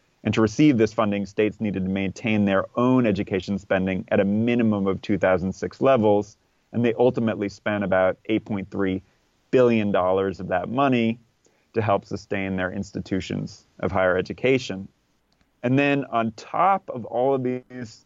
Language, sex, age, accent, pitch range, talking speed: English, male, 30-49, American, 95-115 Hz, 150 wpm